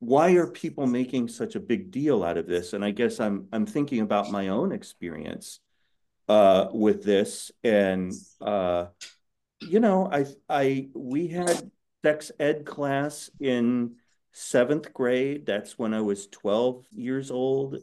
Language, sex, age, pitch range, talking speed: English, male, 40-59, 100-140 Hz, 150 wpm